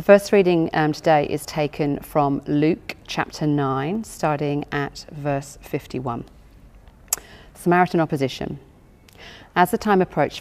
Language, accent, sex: English, British, female